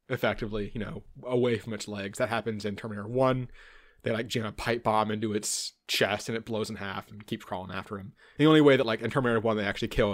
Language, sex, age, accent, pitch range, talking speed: English, male, 30-49, American, 105-135 Hz, 250 wpm